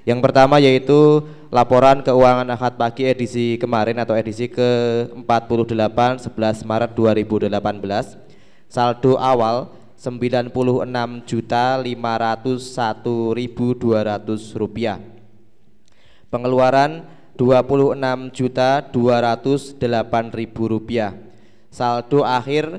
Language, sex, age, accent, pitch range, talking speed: Indonesian, male, 20-39, native, 115-130 Hz, 65 wpm